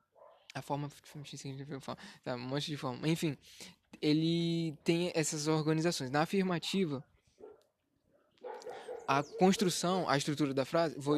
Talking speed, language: 115 wpm, Portuguese